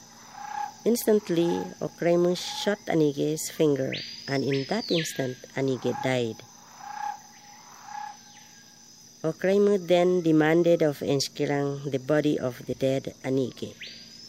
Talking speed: 90 wpm